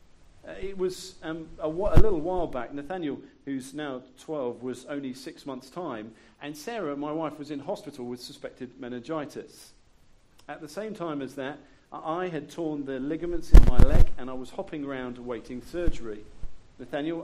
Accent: British